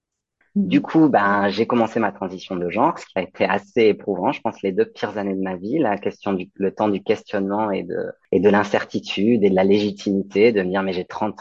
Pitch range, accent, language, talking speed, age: 95-115 Hz, French, French, 240 wpm, 30-49